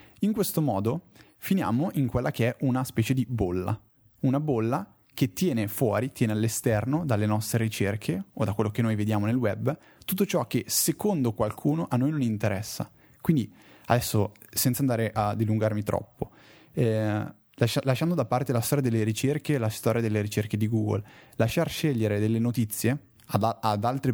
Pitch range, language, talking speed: 110-135 Hz, Italian, 175 wpm